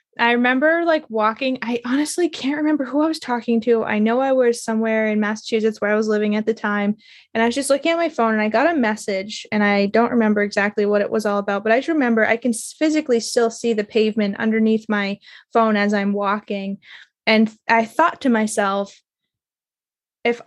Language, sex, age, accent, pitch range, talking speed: English, female, 20-39, American, 205-235 Hz, 215 wpm